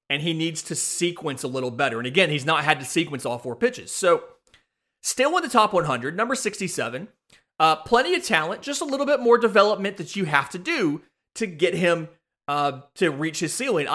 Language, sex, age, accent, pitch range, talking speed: English, male, 30-49, American, 140-190 Hz, 210 wpm